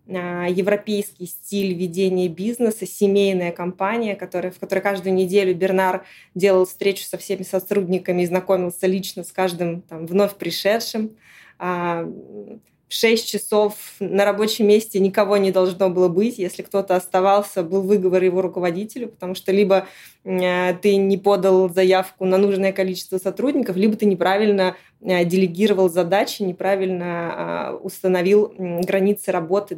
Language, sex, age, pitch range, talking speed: Russian, female, 20-39, 180-200 Hz, 120 wpm